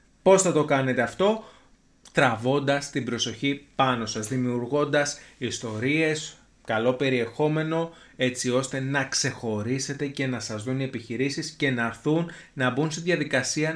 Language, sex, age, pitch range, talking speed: Greek, male, 30-49, 125-160 Hz, 135 wpm